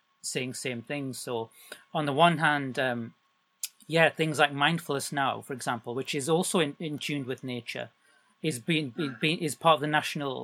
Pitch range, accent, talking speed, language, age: 130-155 Hz, British, 185 wpm, English, 30-49